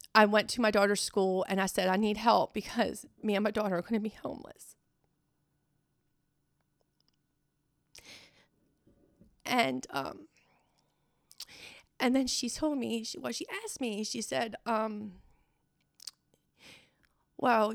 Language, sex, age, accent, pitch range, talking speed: English, female, 30-49, American, 200-245 Hz, 130 wpm